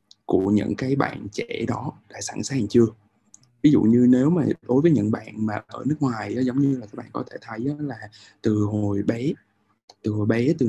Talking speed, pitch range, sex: 220 wpm, 105-125 Hz, male